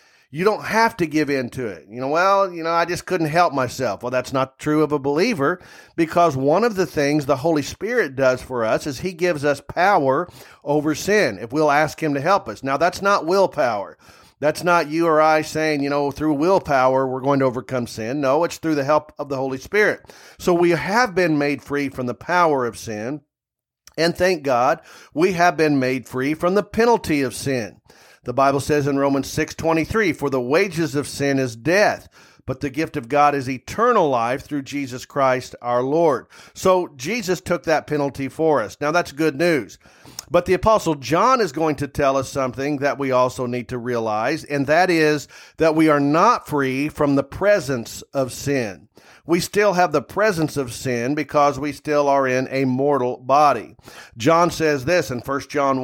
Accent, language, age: American, English, 40-59